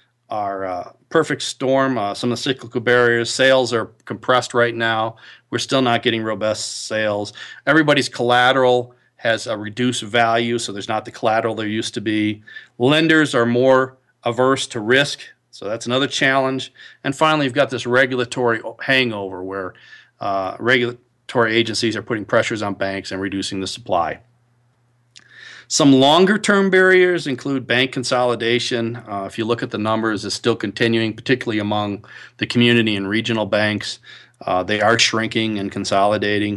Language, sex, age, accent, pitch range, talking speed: English, male, 40-59, American, 105-125 Hz, 155 wpm